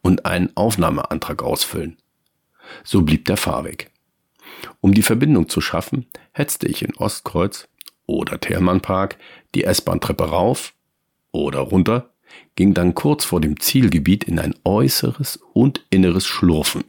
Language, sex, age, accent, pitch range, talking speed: German, male, 50-69, German, 80-95 Hz, 130 wpm